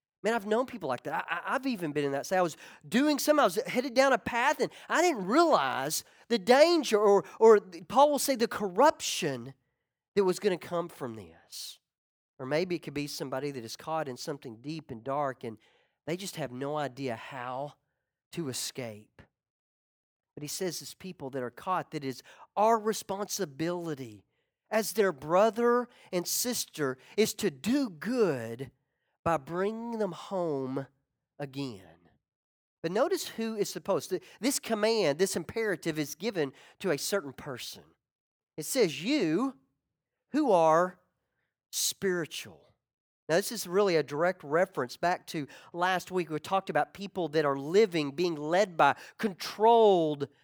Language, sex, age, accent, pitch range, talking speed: English, male, 40-59, American, 145-220 Hz, 165 wpm